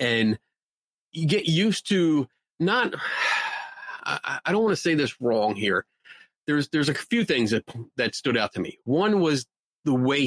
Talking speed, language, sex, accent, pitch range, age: 175 wpm, English, male, American, 120-160 Hz, 30-49